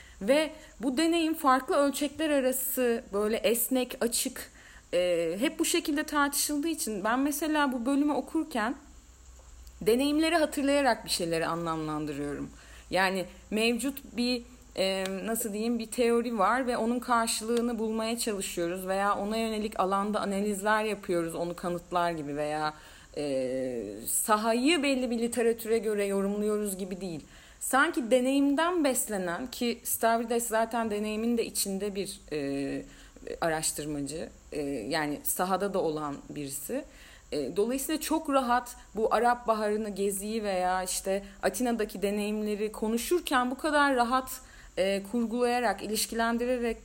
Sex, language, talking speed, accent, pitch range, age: female, Turkish, 120 wpm, native, 195-260 Hz, 40-59